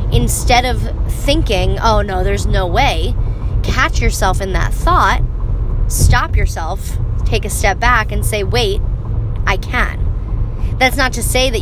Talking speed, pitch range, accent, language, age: 150 wpm, 95-110 Hz, American, English, 20-39